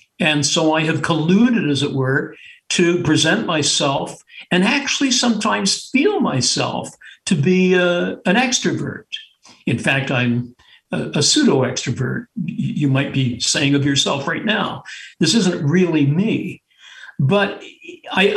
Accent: American